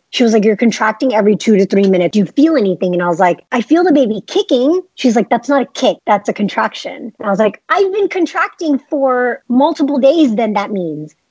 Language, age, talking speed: English, 30-49, 240 wpm